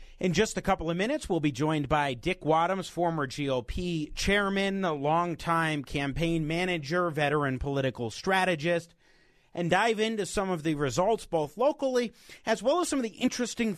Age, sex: 30-49, male